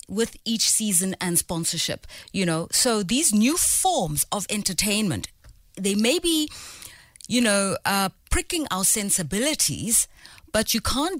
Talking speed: 135 wpm